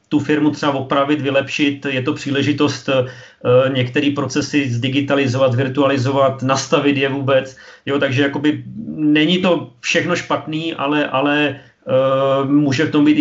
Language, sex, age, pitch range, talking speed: Czech, male, 40-59, 130-145 Hz, 130 wpm